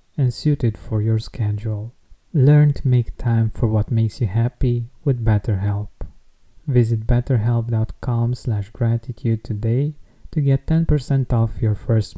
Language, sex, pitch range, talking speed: English, male, 115-140 Hz, 135 wpm